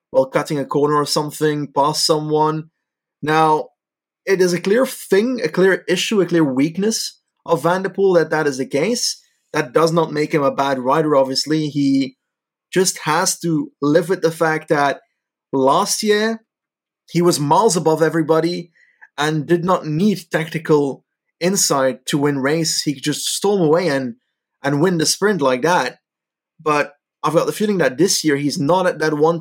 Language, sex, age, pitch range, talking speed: English, male, 30-49, 145-175 Hz, 175 wpm